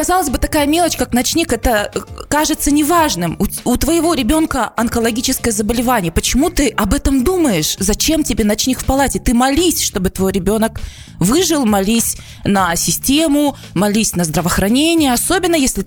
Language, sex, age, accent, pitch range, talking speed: Russian, female, 20-39, native, 190-270 Hz, 150 wpm